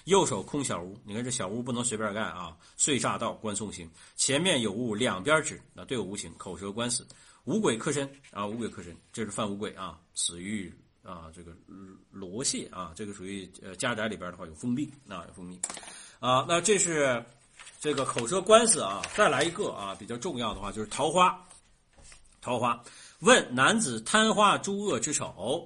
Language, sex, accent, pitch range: Chinese, male, native, 95-150 Hz